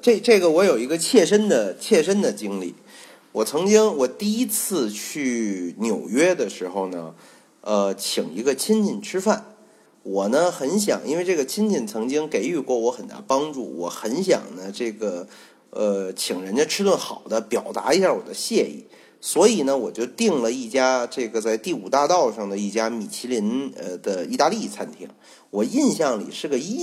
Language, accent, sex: Chinese, native, male